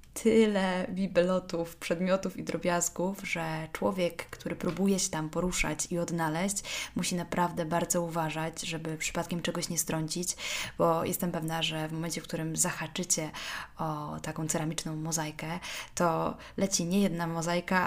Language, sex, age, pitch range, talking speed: Polish, female, 20-39, 165-190 Hz, 140 wpm